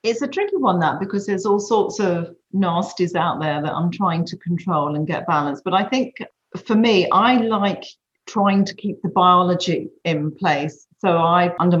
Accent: British